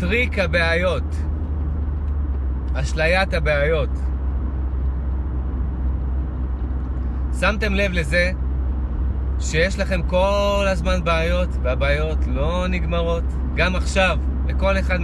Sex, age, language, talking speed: male, 30-49, Hebrew, 75 wpm